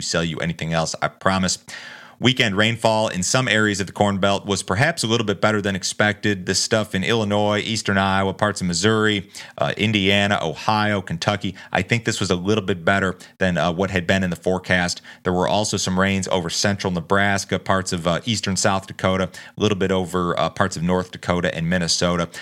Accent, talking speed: American, 205 wpm